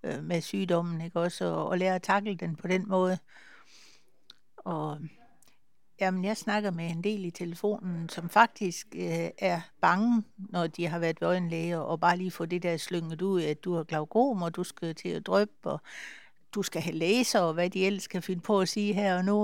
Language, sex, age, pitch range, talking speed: Danish, female, 60-79, 170-200 Hz, 210 wpm